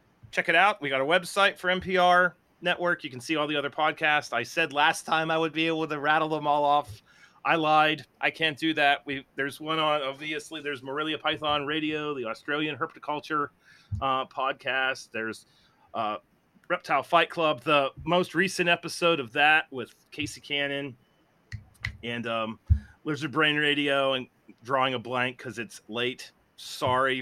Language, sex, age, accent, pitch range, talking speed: English, male, 30-49, American, 120-160 Hz, 170 wpm